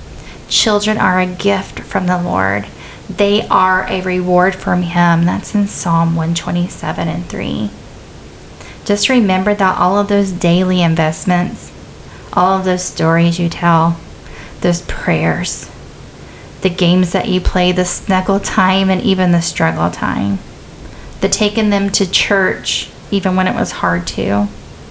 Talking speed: 140 wpm